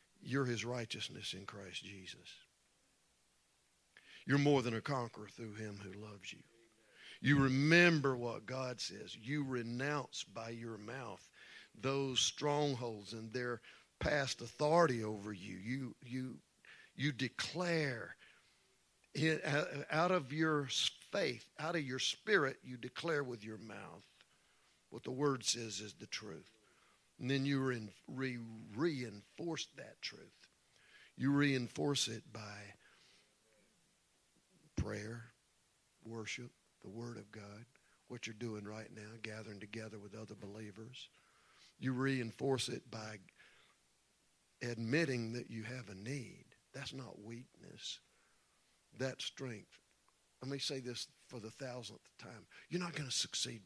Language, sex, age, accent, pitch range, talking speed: English, male, 50-69, American, 110-135 Hz, 125 wpm